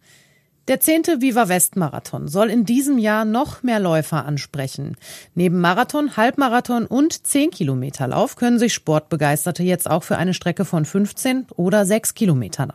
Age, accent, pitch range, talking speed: 40-59, German, 155-215 Hz, 135 wpm